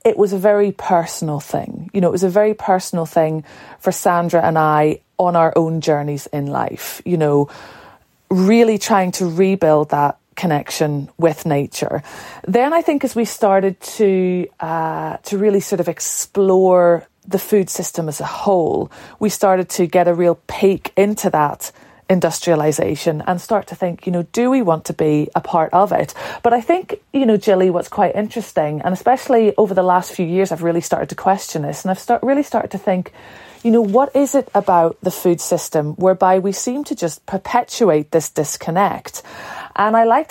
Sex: female